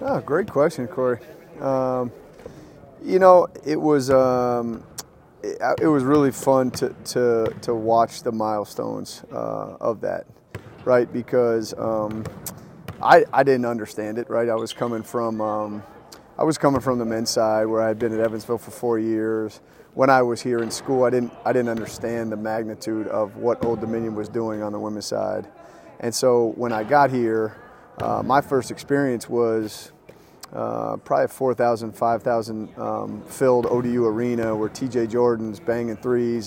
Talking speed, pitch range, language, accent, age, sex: 165 wpm, 110-125 Hz, English, American, 30-49, male